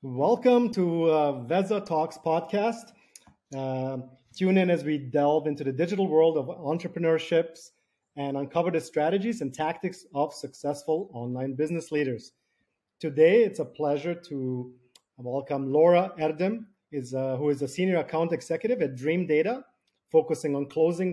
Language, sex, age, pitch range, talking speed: English, male, 30-49, 140-175 Hz, 140 wpm